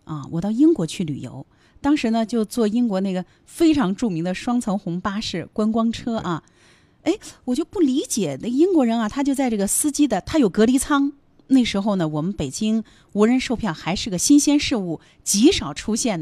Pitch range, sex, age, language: 190-295 Hz, female, 30-49, Chinese